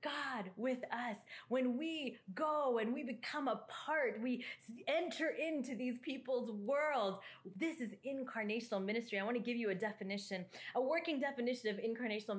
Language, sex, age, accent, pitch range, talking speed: English, female, 30-49, American, 185-245 Hz, 160 wpm